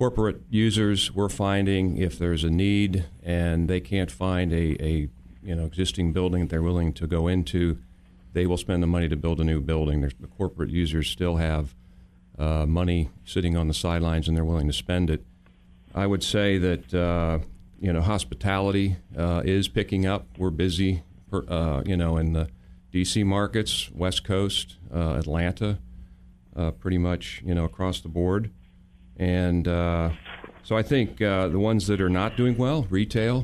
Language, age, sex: English, 40-59, male